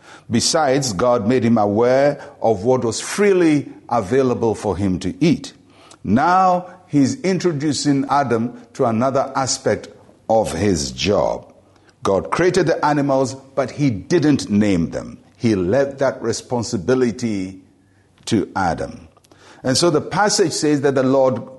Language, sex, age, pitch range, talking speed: English, male, 60-79, 115-145 Hz, 130 wpm